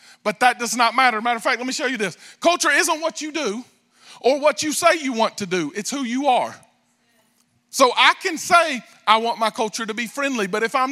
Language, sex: English, male